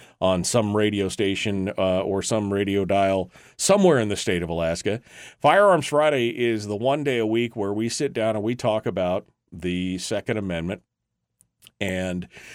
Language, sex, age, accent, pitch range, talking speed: English, male, 40-59, American, 100-125 Hz, 165 wpm